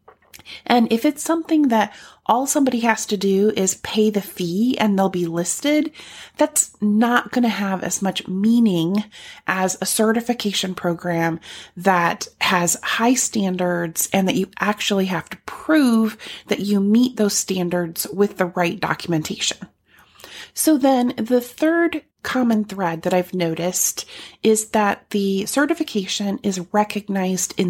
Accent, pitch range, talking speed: American, 190-245 Hz, 145 wpm